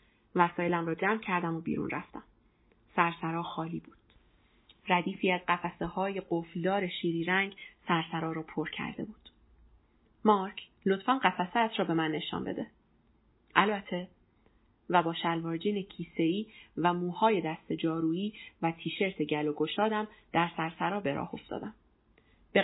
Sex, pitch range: female, 165-195 Hz